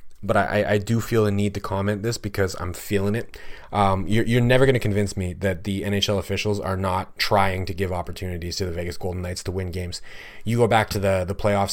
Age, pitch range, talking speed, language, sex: 30-49, 95-115 Hz, 240 wpm, English, male